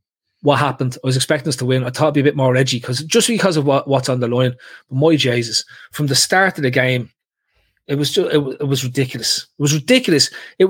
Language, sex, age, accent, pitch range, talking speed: English, male, 30-49, Irish, 130-180 Hz, 260 wpm